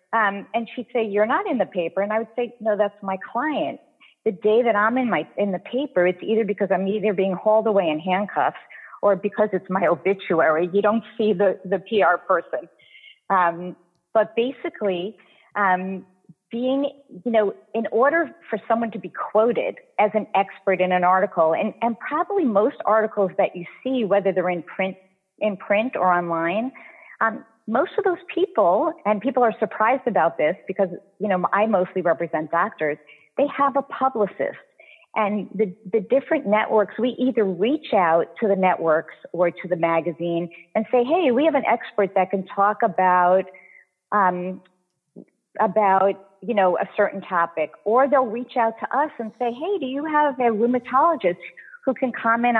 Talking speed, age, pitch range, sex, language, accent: 180 wpm, 40-59, 185-235 Hz, female, English, American